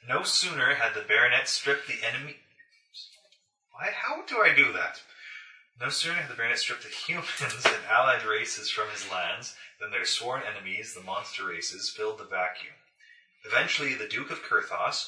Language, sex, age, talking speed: English, male, 30-49, 170 wpm